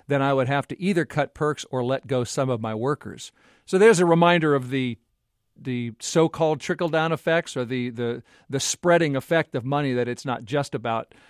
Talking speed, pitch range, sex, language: 205 wpm, 130-165 Hz, male, English